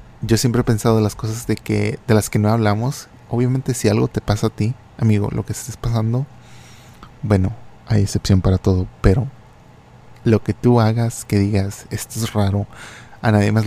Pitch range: 105-120 Hz